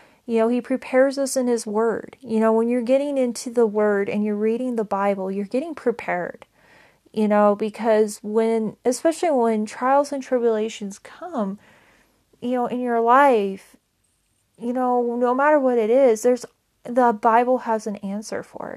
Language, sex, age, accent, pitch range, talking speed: English, female, 30-49, American, 210-255 Hz, 170 wpm